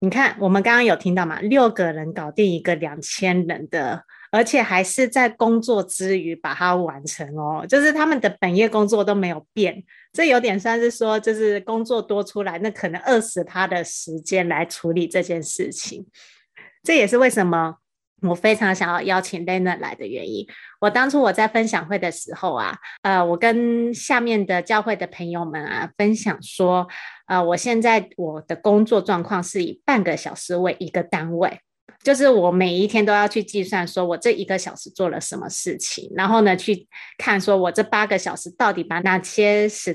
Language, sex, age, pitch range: Chinese, female, 30-49, 180-230 Hz